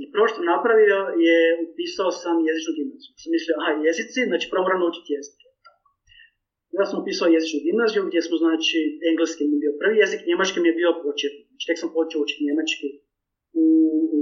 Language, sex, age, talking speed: Croatian, male, 30-49, 175 wpm